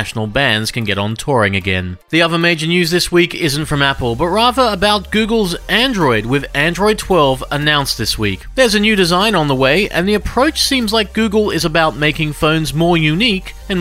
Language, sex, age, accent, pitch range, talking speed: English, male, 40-59, Australian, 130-185 Hz, 200 wpm